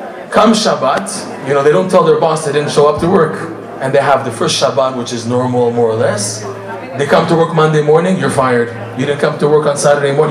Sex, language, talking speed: male, English, 250 wpm